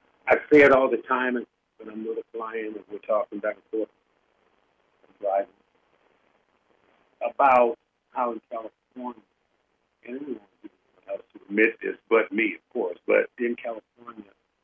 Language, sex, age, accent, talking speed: English, male, 50-69, American, 150 wpm